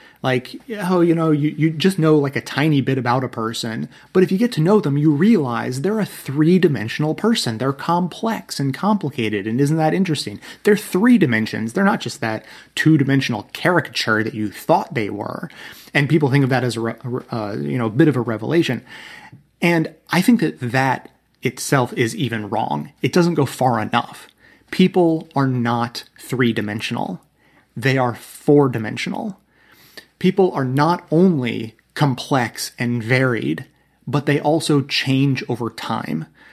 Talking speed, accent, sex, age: 165 wpm, American, male, 30-49